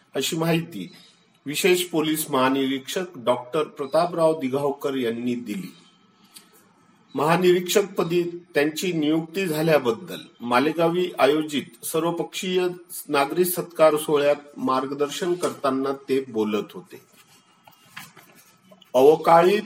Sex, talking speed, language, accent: male, 60 wpm, Marathi, native